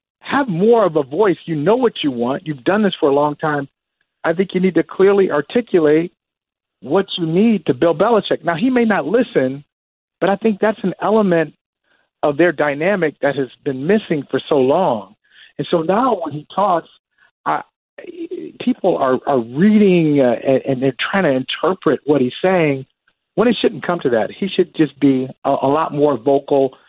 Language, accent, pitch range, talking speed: English, American, 135-190 Hz, 195 wpm